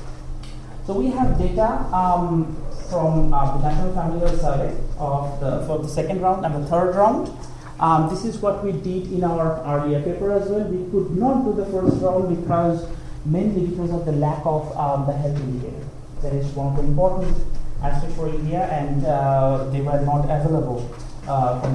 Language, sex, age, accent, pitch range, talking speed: English, male, 30-49, Indian, 140-185 Hz, 195 wpm